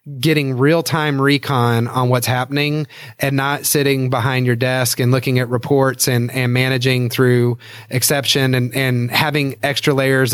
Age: 30-49